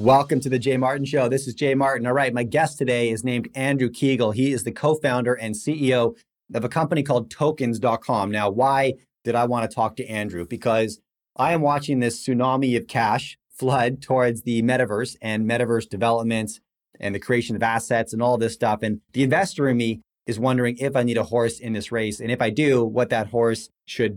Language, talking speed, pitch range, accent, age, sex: English, 215 wpm, 110-135 Hz, American, 30-49, male